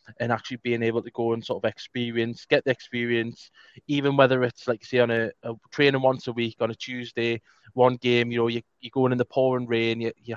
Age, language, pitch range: 20-39, English, 115-130 Hz